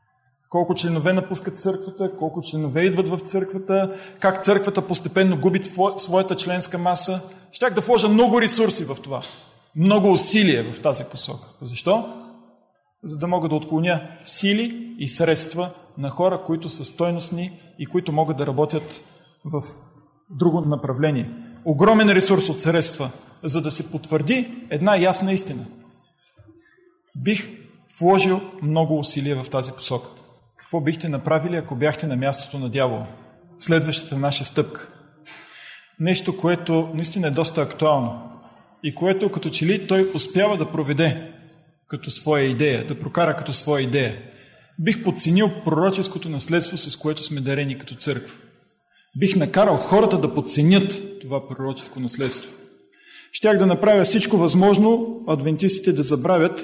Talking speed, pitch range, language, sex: 135 wpm, 150-190 Hz, Bulgarian, male